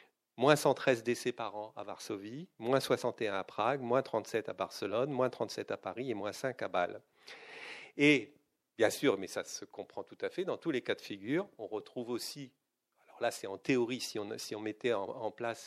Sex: male